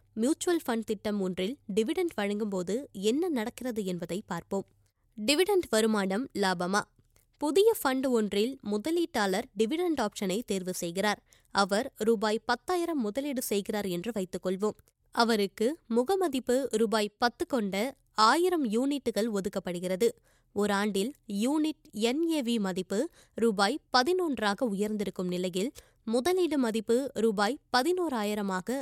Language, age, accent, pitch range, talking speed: Tamil, 20-39, native, 205-265 Hz, 100 wpm